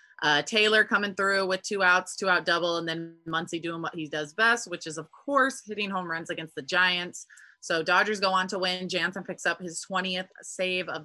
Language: English